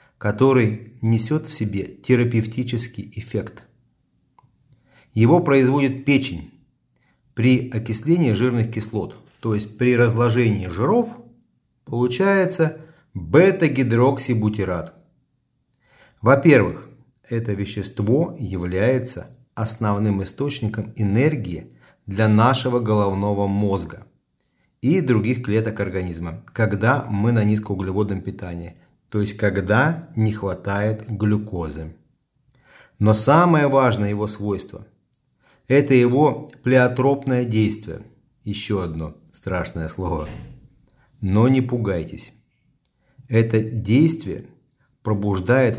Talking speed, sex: 85 wpm, male